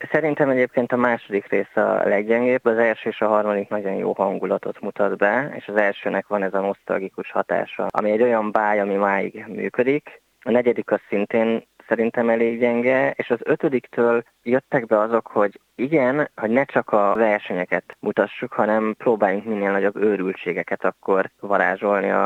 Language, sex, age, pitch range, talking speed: Hungarian, male, 20-39, 100-115 Hz, 160 wpm